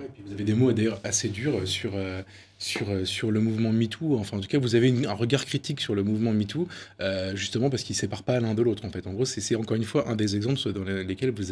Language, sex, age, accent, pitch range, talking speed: French, male, 20-39, French, 100-130 Hz, 275 wpm